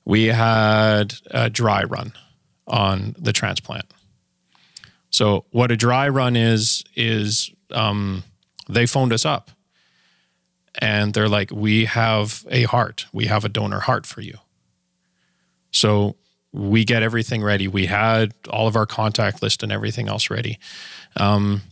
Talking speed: 140 wpm